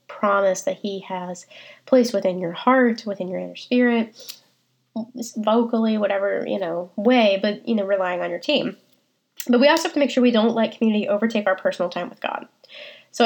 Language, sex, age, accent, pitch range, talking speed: English, female, 10-29, American, 195-235 Hz, 190 wpm